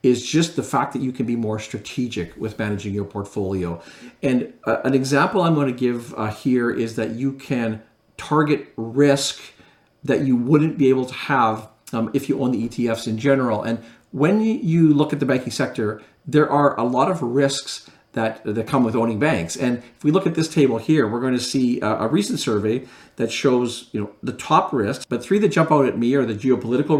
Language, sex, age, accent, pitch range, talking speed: English, male, 50-69, American, 115-145 Hz, 210 wpm